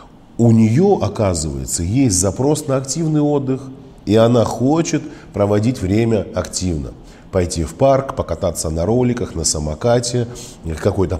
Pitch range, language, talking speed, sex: 95-125 Hz, Russian, 125 wpm, male